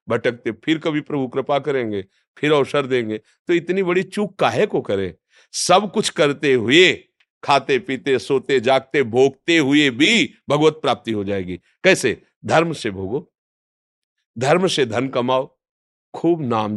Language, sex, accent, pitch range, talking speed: Hindi, male, native, 110-160 Hz, 145 wpm